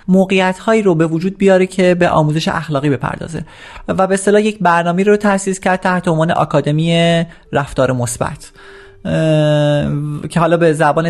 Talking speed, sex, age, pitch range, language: 155 wpm, male, 30-49, 155-195 Hz, Persian